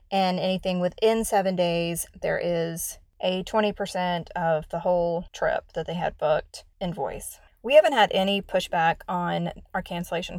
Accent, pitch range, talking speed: American, 175-215 Hz, 150 wpm